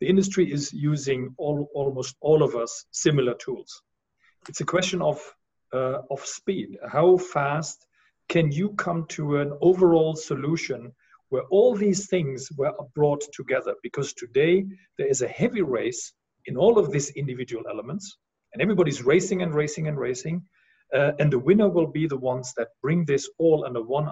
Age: 40-59